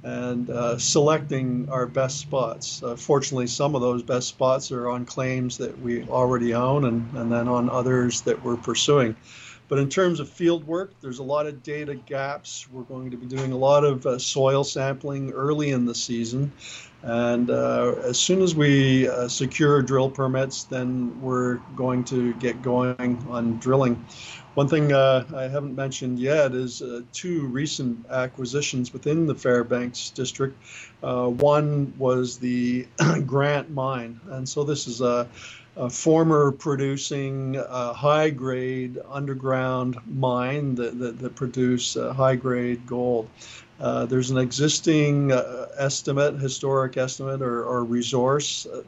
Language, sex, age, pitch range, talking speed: English, male, 50-69, 125-140 Hz, 155 wpm